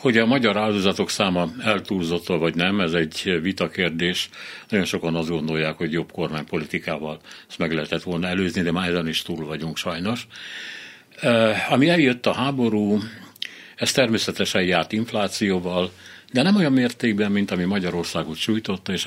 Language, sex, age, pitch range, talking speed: Hungarian, male, 60-79, 85-105 Hz, 150 wpm